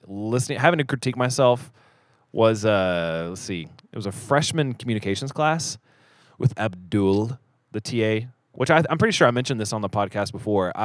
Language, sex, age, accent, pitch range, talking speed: English, male, 20-39, American, 100-130 Hz, 170 wpm